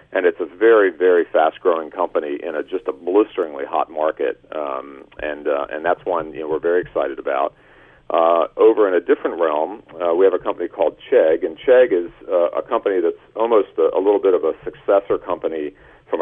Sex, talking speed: male, 210 wpm